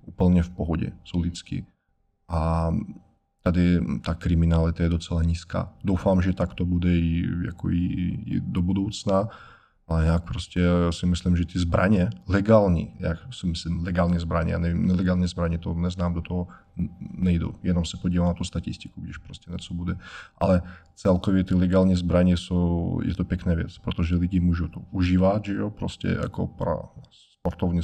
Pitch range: 85-100 Hz